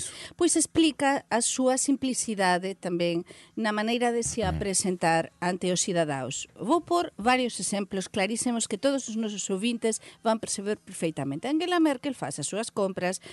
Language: Portuguese